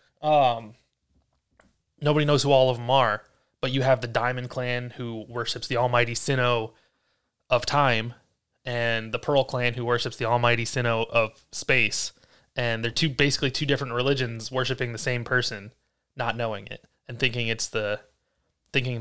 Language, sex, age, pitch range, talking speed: English, male, 20-39, 115-135 Hz, 160 wpm